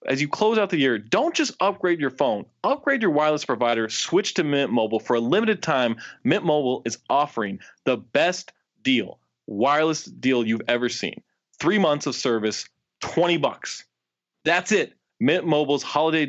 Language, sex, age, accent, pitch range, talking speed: English, male, 20-39, American, 120-160 Hz, 170 wpm